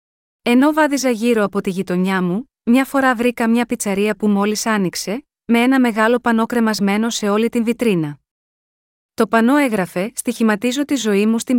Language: Greek